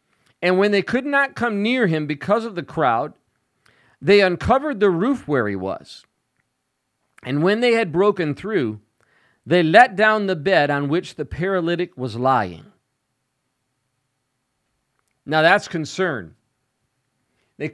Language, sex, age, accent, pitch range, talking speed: English, male, 40-59, American, 155-240 Hz, 135 wpm